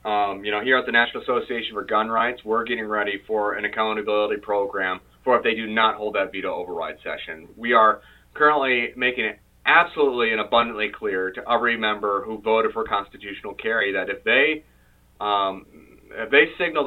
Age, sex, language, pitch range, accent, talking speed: 30-49, male, English, 95-120 Hz, American, 185 wpm